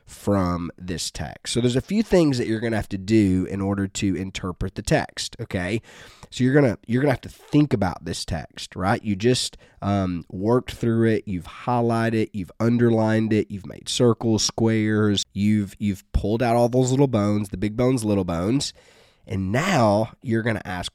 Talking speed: 195 wpm